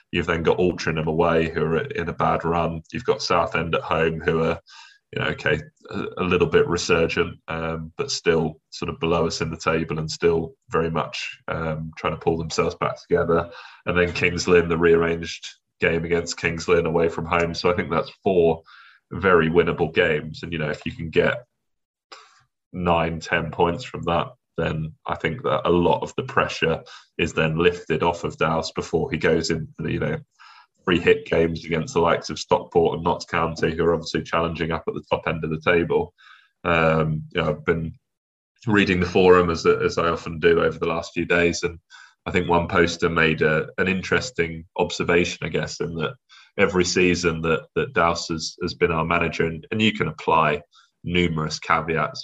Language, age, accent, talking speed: English, 20-39, British, 195 wpm